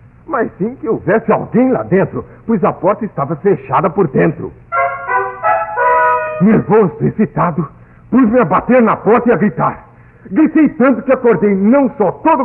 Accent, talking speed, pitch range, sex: Brazilian, 160 wpm, 160-245 Hz, male